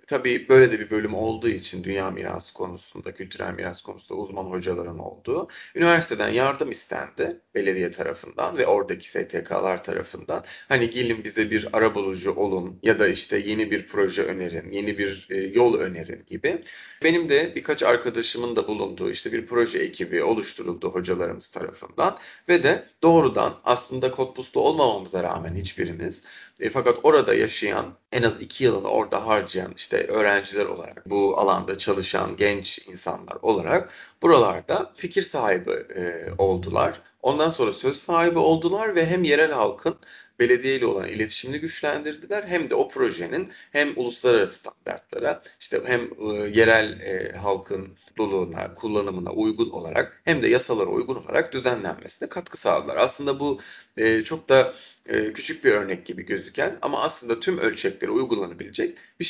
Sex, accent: male, native